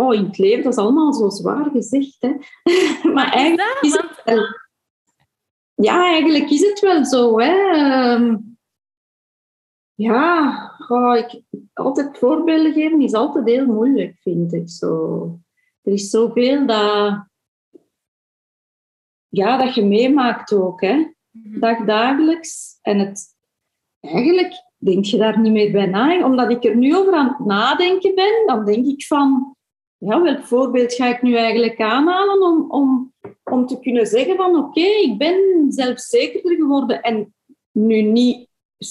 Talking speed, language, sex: 145 wpm, Dutch, female